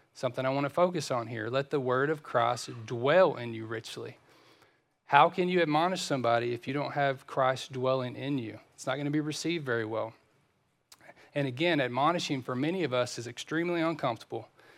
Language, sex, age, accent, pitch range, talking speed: English, male, 40-59, American, 125-145 Hz, 190 wpm